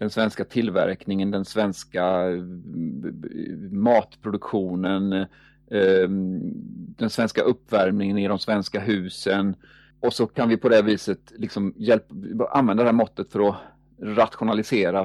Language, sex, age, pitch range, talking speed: Swedish, male, 40-59, 100-120 Hz, 110 wpm